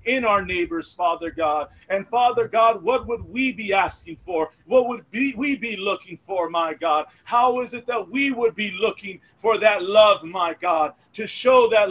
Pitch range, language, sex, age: 185-230 Hz, English, male, 40-59